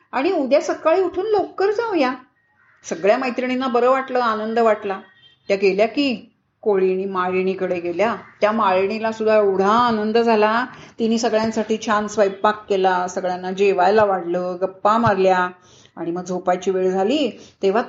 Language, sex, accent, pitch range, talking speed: Marathi, female, native, 200-270 Hz, 140 wpm